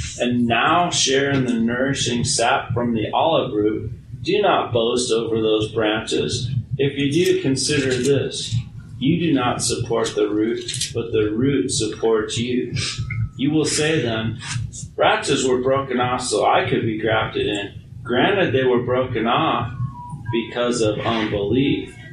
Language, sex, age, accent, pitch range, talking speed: English, male, 40-59, American, 115-135 Hz, 150 wpm